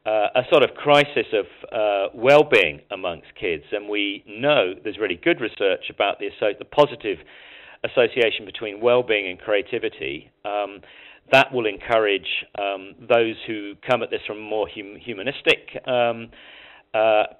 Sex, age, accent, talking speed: male, 40-59, British, 150 wpm